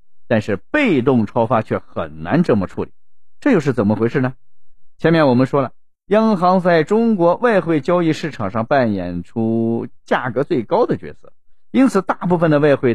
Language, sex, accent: Chinese, male, native